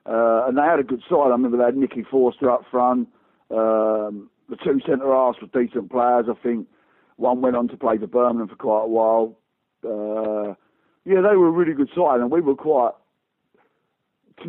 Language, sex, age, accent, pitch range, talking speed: English, male, 50-69, British, 120-150 Hz, 205 wpm